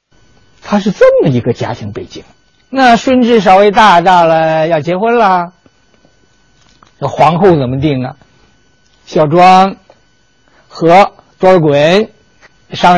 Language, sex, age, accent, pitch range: Chinese, male, 50-69, native, 125-185 Hz